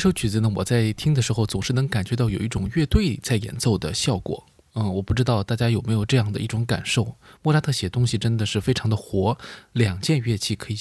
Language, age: Chinese, 20-39